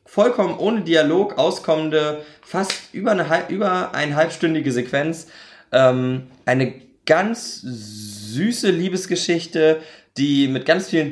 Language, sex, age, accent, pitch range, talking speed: German, male, 20-39, German, 125-160 Hz, 105 wpm